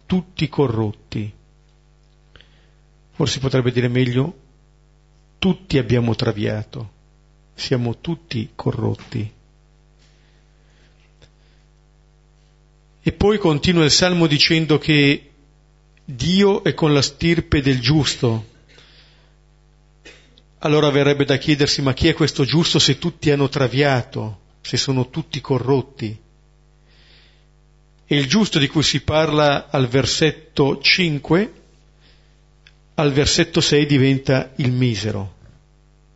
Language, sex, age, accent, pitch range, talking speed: Italian, male, 50-69, native, 135-155 Hz, 100 wpm